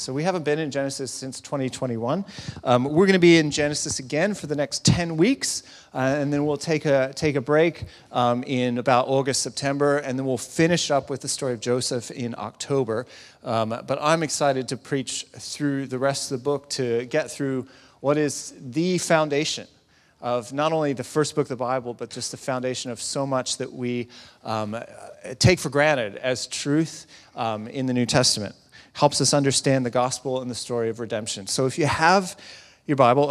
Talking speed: 200 wpm